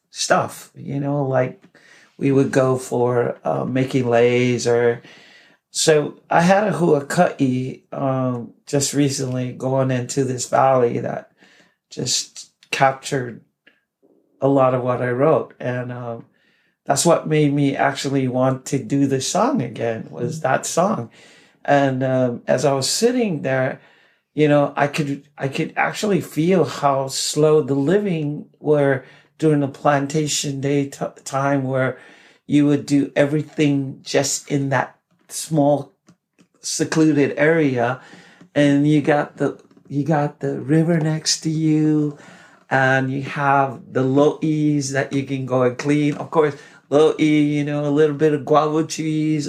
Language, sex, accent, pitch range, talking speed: English, male, American, 135-155 Hz, 145 wpm